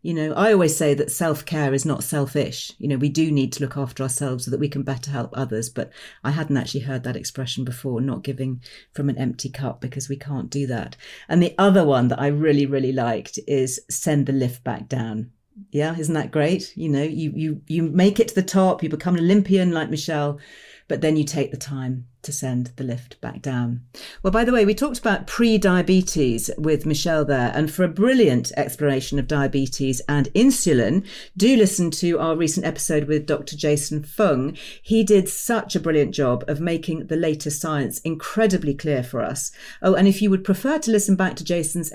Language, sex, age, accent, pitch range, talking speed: English, female, 40-59, British, 135-185 Hz, 210 wpm